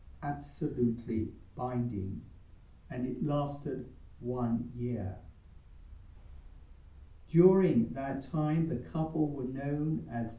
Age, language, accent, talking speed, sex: 60-79, English, British, 85 wpm, male